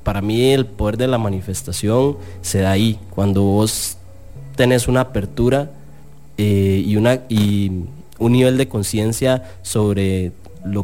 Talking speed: 135 wpm